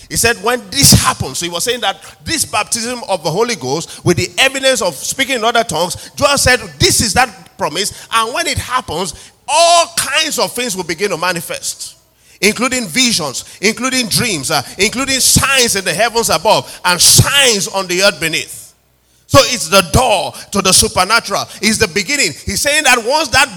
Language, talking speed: English, 190 wpm